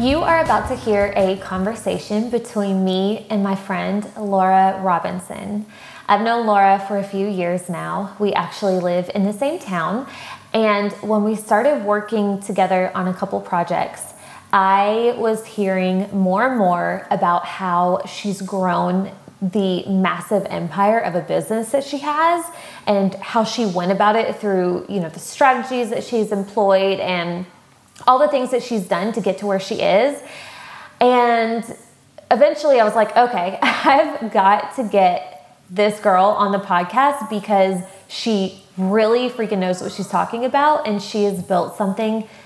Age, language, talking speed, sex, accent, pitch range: 20-39, English, 160 wpm, female, American, 190-225 Hz